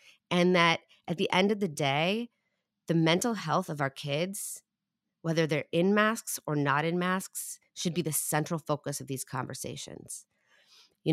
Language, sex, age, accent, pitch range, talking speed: English, female, 30-49, American, 150-205 Hz, 165 wpm